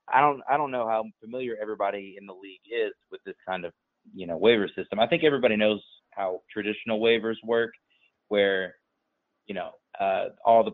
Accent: American